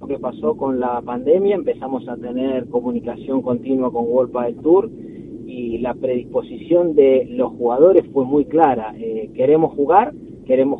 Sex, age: male, 30-49